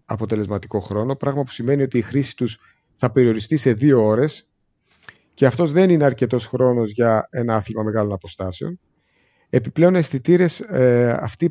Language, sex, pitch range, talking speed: Greek, male, 110-160 Hz, 145 wpm